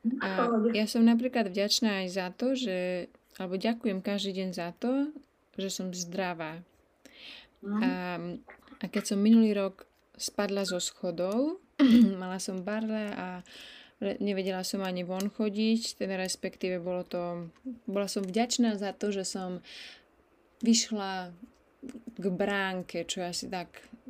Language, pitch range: Slovak, 180-220 Hz